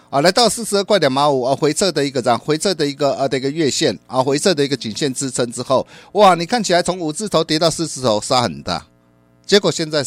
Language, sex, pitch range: Chinese, male, 95-150 Hz